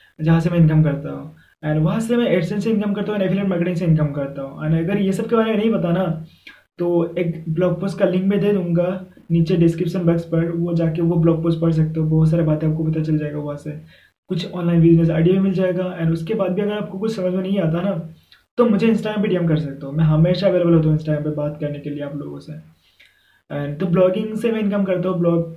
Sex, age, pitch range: male, 20-39, 160-195 Hz